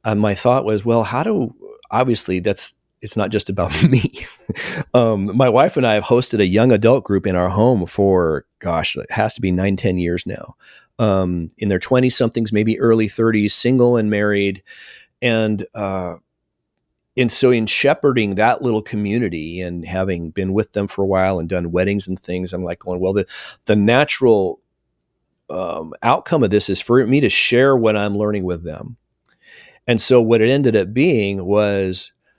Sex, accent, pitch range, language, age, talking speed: male, American, 95-120 Hz, English, 30-49, 185 wpm